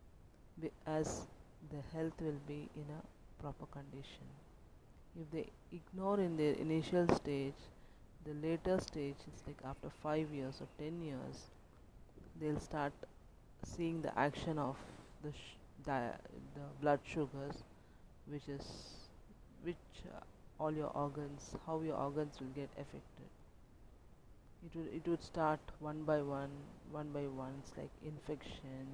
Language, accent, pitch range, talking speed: English, Indian, 135-160 Hz, 135 wpm